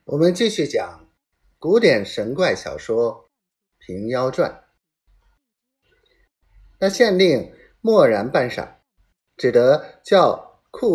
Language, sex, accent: Chinese, male, native